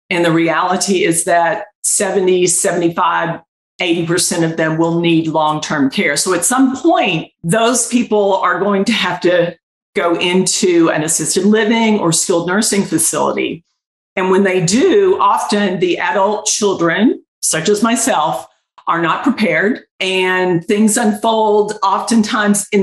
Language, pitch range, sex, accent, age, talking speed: English, 170-220 Hz, female, American, 50-69, 140 wpm